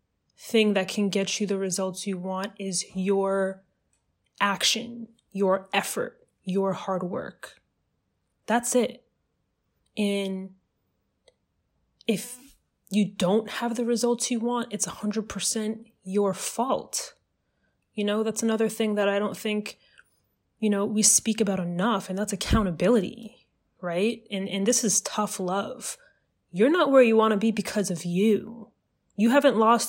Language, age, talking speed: English, 20-39, 145 wpm